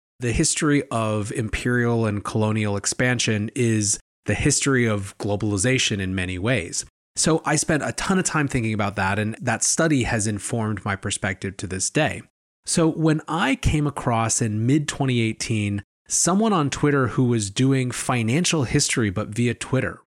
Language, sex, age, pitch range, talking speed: English, male, 30-49, 110-145 Hz, 160 wpm